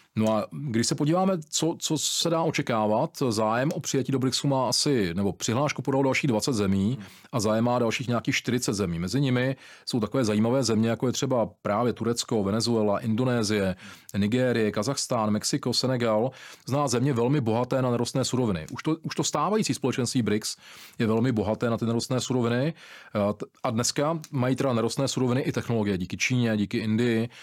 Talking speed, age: 175 wpm, 40-59